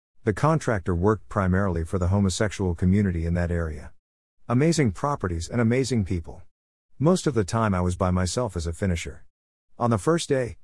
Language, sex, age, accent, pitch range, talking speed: English, male, 50-69, American, 90-120 Hz, 175 wpm